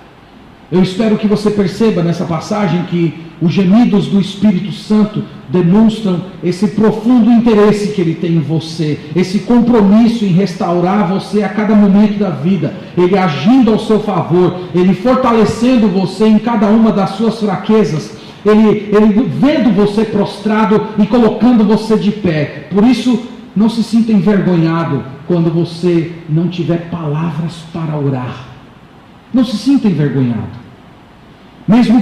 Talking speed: 140 wpm